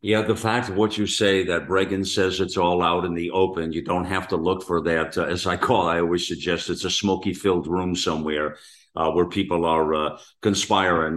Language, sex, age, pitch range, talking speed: English, male, 50-69, 85-100 Hz, 225 wpm